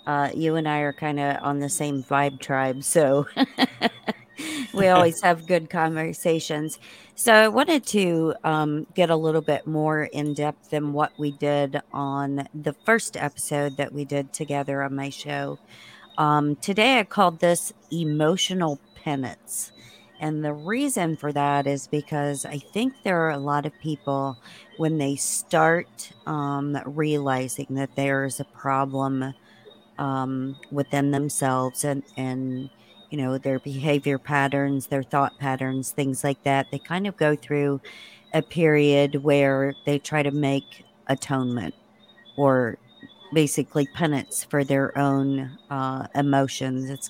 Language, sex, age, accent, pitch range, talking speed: English, female, 50-69, American, 135-155 Hz, 145 wpm